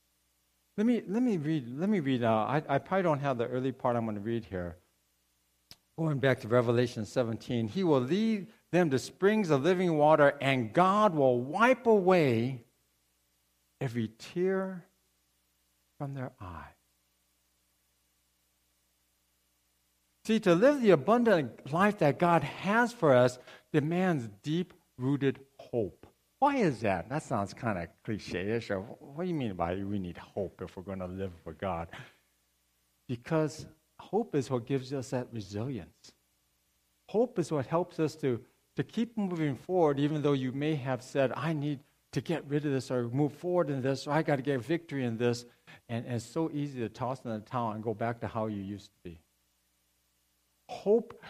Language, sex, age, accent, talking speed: English, male, 60-79, American, 175 wpm